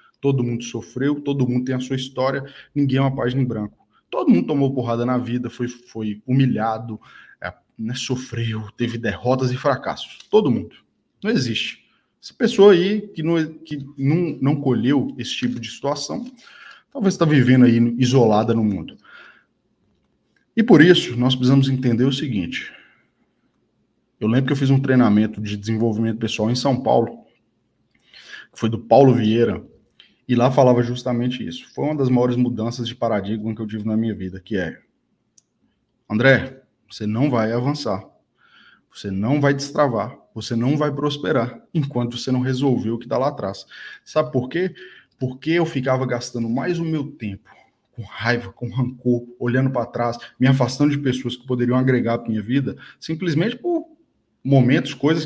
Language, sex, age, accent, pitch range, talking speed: Portuguese, male, 20-39, Brazilian, 115-145 Hz, 165 wpm